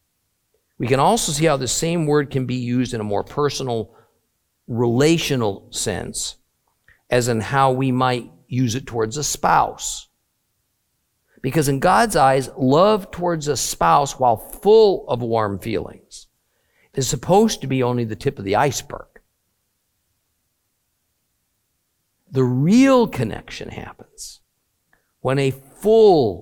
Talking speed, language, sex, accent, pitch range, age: 130 wpm, English, male, American, 110-145 Hz, 50-69